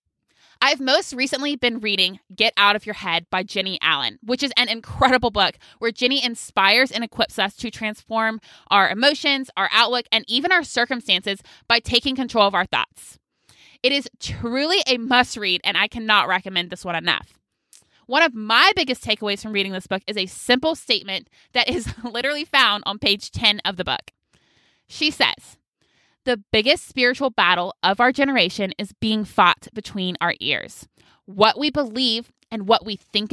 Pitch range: 200-255 Hz